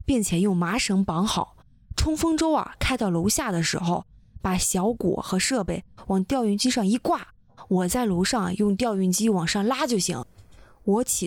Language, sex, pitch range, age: Chinese, female, 180-245 Hz, 20-39